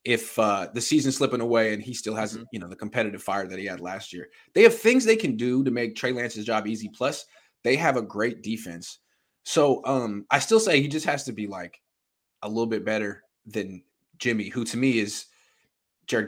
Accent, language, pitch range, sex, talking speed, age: American, English, 105-135 Hz, male, 220 wpm, 20-39